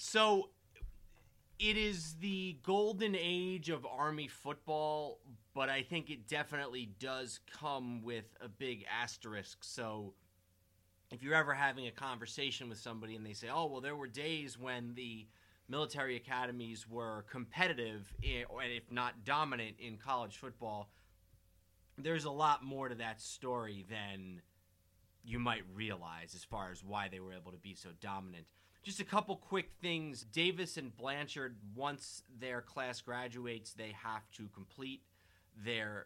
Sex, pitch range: male, 105-140 Hz